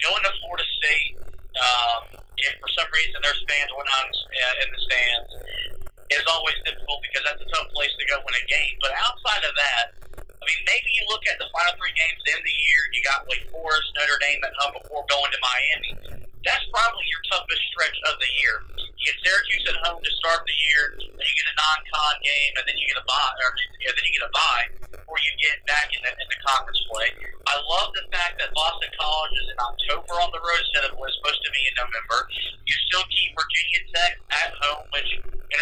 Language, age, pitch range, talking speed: English, 40-59, 140-165 Hz, 225 wpm